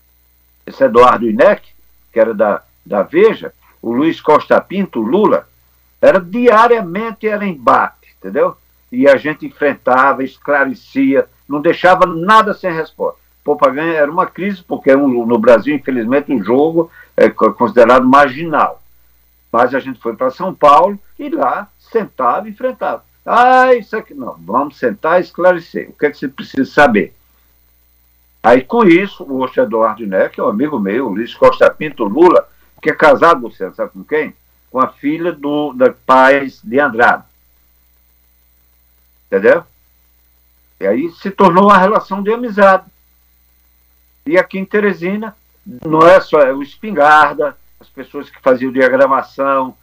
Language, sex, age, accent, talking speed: Portuguese, male, 60-79, Brazilian, 150 wpm